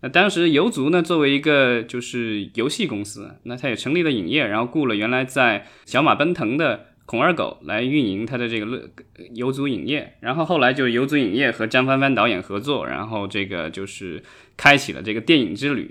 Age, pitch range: 20-39, 120-155 Hz